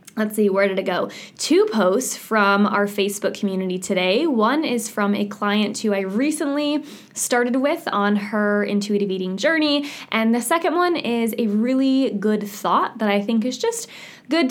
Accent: American